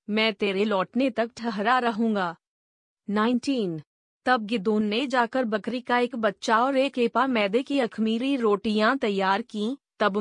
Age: 20-39